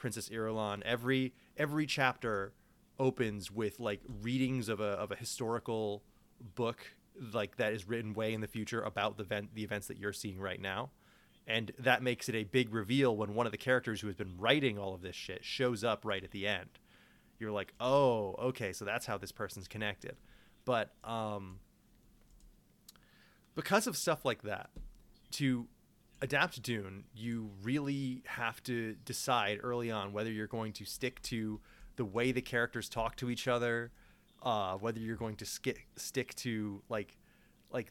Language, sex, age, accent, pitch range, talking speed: English, male, 30-49, American, 105-125 Hz, 175 wpm